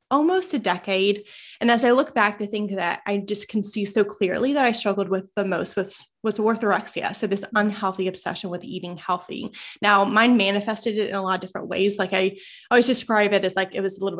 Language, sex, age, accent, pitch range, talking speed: English, female, 20-39, American, 190-225 Hz, 235 wpm